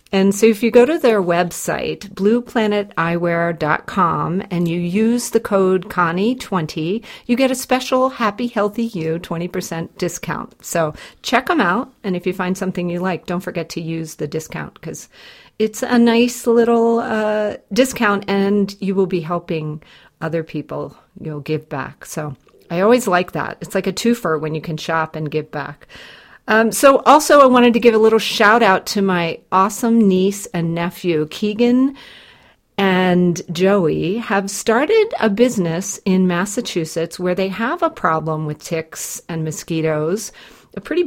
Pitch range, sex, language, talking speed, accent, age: 165-225 Hz, female, English, 160 wpm, American, 40-59